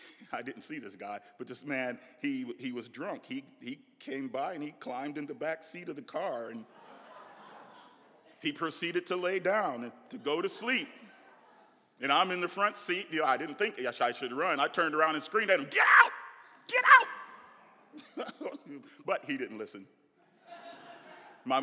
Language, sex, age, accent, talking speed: English, male, 40-59, American, 185 wpm